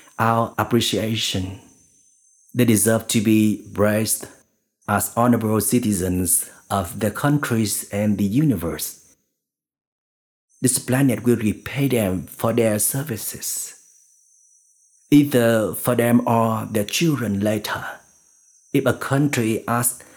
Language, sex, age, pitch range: Vietnamese, male, 50-69, 105-125 Hz